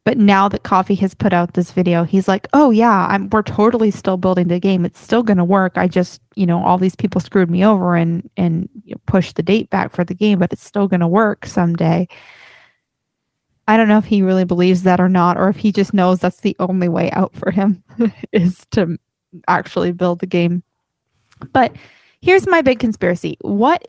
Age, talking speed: 20-39, 220 wpm